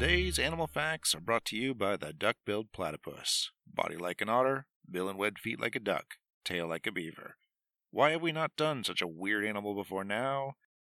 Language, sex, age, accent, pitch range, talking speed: English, male, 40-59, American, 90-130 Hz, 205 wpm